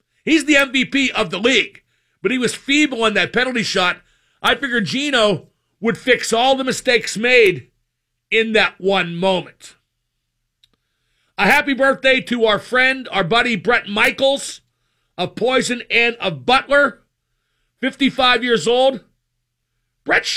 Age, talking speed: 50-69, 135 wpm